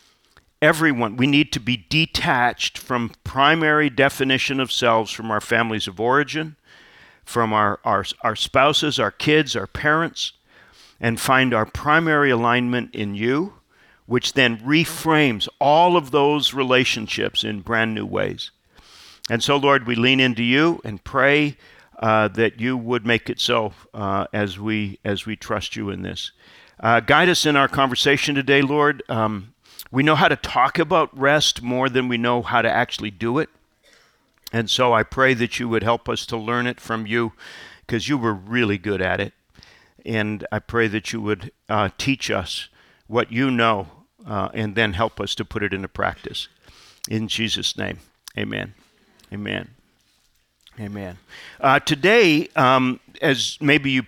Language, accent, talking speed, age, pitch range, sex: English, American, 165 wpm, 50-69, 110-140 Hz, male